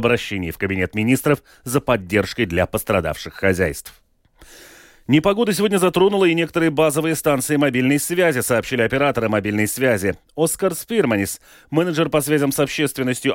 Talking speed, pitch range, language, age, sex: 130 wpm, 110-150 Hz, Russian, 30-49, male